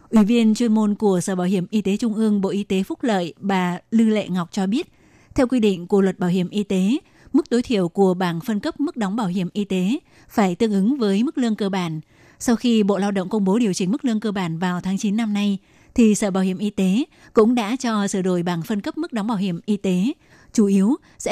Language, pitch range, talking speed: Vietnamese, 190-220 Hz, 265 wpm